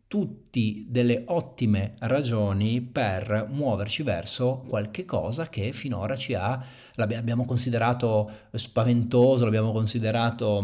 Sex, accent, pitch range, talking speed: male, native, 105-125 Hz, 100 wpm